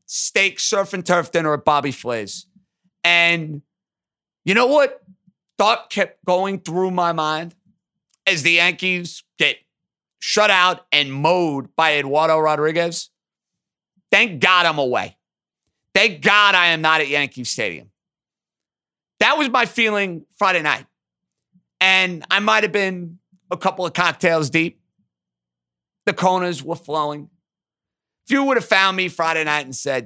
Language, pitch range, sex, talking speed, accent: English, 150-185 Hz, male, 140 wpm, American